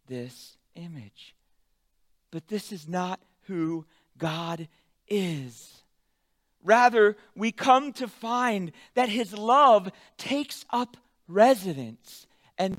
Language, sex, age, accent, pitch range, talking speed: English, male, 40-59, American, 150-225 Hz, 100 wpm